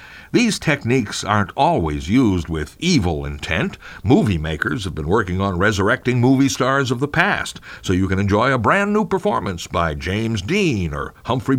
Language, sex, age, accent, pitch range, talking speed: English, male, 60-79, American, 90-140 Hz, 170 wpm